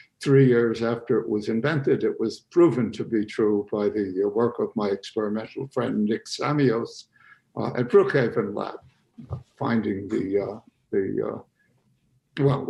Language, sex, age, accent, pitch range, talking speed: English, male, 60-79, American, 115-140 Hz, 145 wpm